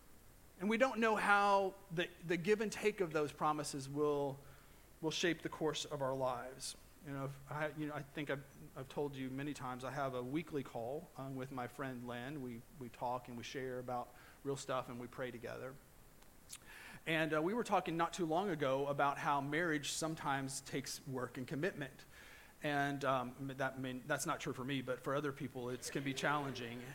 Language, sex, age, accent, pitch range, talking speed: English, male, 40-59, American, 135-165 Hz, 205 wpm